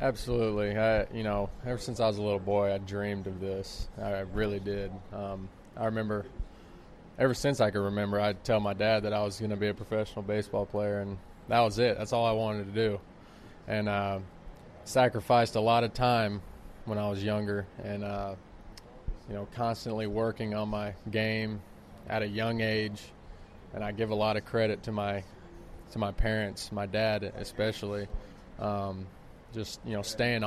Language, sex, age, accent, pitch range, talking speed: English, male, 20-39, American, 100-110 Hz, 185 wpm